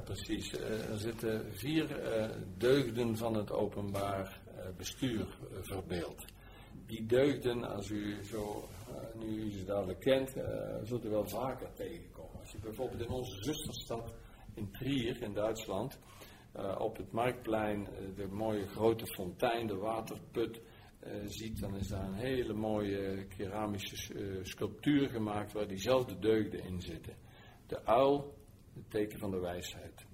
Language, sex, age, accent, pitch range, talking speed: Dutch, male, 60-79, Dutch, 95-110 Hz, 130 wpm